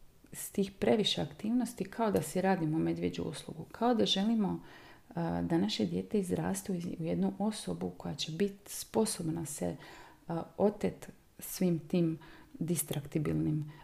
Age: 30-49